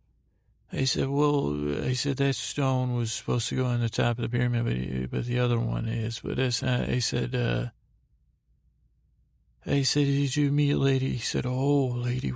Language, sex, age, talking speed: English, male, 40-59, 185 wpm